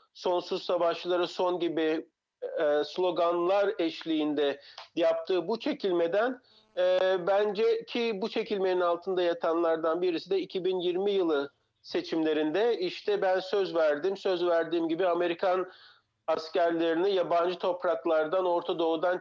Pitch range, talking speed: 165-220 Hz, 110 wpm